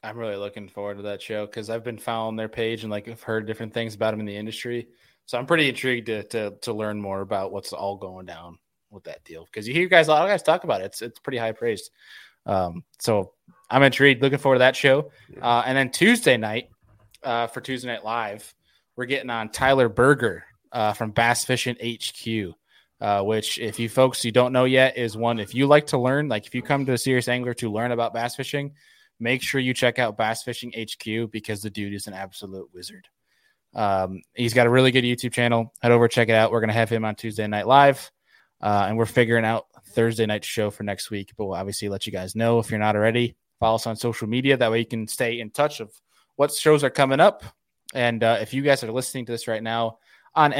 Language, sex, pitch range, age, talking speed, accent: English, male, 110-130 Hz, 20-39, 240 wpm, American